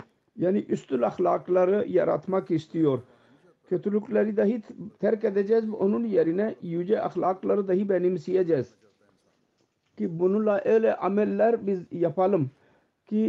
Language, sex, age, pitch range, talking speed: Turkish, male, 50-69, 155-200 Hz, 105 wpm